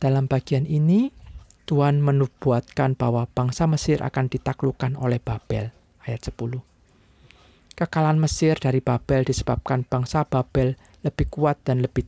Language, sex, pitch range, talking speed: Indonesian, male, 115-145 Hz, 125 wpm